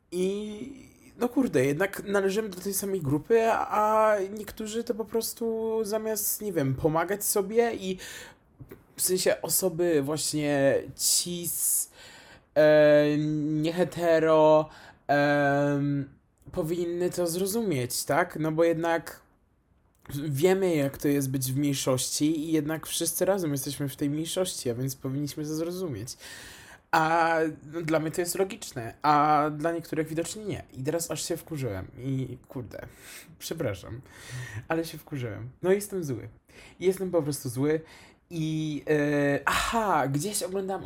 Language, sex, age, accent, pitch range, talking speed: Polish, male, 20-39, native, 140-185 Hz, 130 wpm